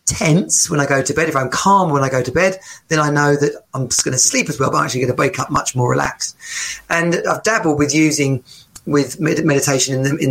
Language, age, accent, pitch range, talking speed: English, 30-49, British, 130-160 Hz, 260 wpm